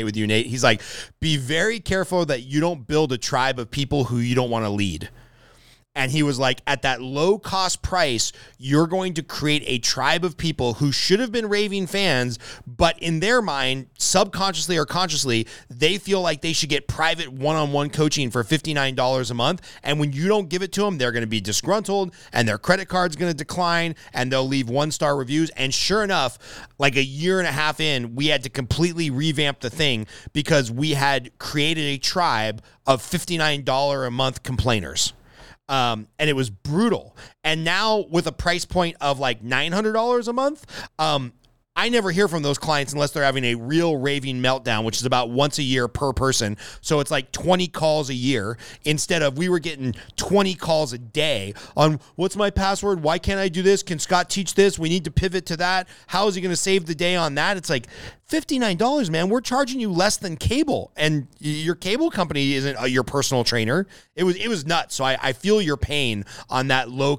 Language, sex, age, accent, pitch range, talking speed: English, male, 30-49, American, 130-180 Hz, 210 wpm